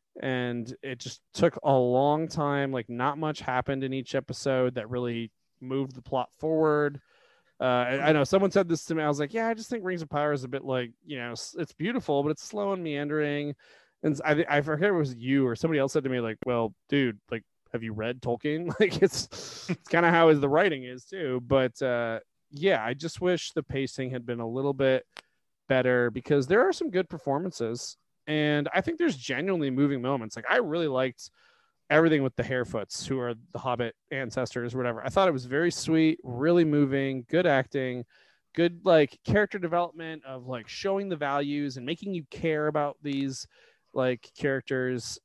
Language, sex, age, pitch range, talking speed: English, male, 20-39, 125-165 Hz, 200 wpm